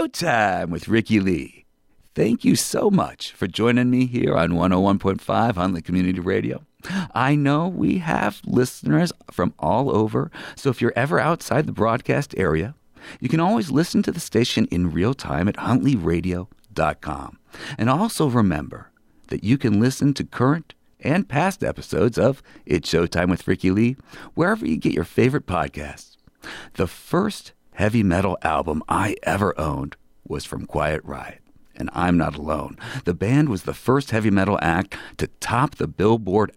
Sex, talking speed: male, 160 wpm